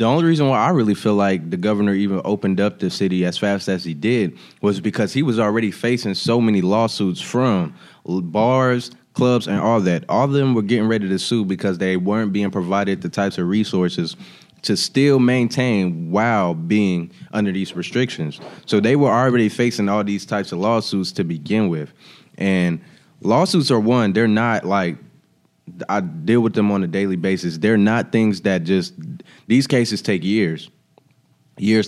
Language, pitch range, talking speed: English, 95-115 Hz, 185 wpm